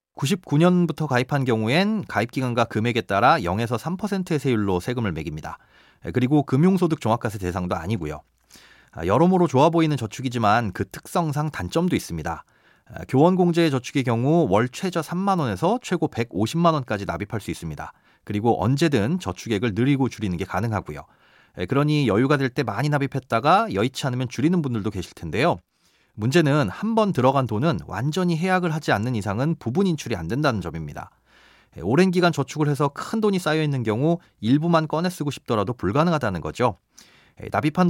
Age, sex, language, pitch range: 30-49, male, Korean, 110-160 Hz